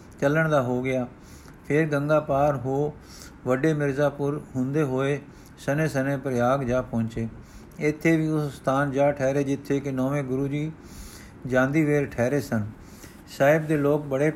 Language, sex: Punjabi, male